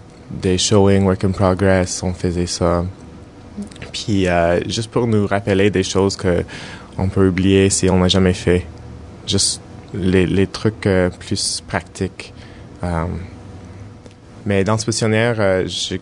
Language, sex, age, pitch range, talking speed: English, male, 20-39, 90-105 Hz, 145 wpm